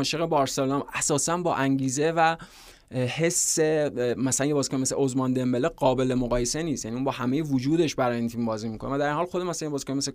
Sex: male